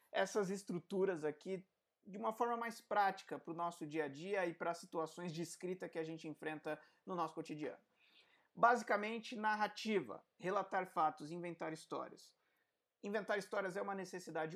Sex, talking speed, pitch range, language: male, 155 wpm, 165-210 Hz, Portuguese